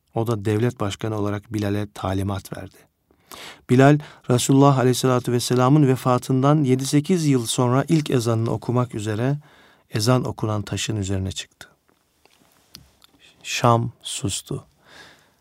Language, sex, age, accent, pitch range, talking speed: Turkish, male, 40-59, native, 105-140 Hz, 105 wpm